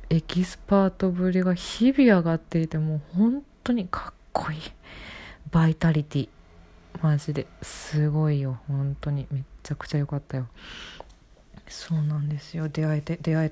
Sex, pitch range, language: female, 150-195 Hz, Japanese